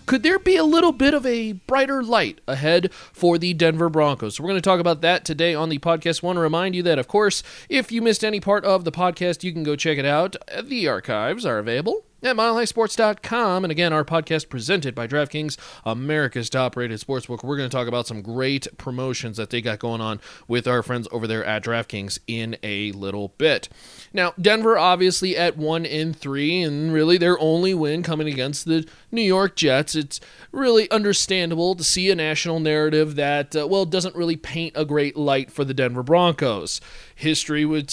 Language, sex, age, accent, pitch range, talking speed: English, male, 30-49, American, 140-180 Hz, 200 wpm